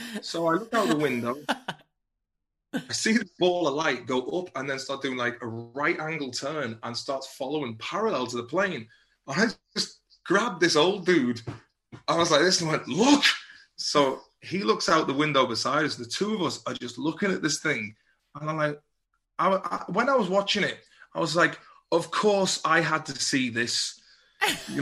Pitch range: 125-160 Hz